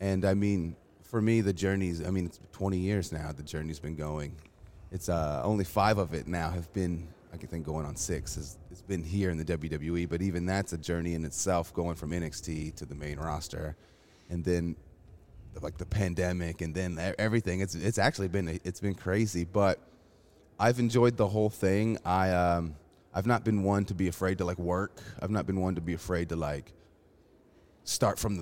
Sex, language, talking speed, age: male, English, 210 wpm, 30-49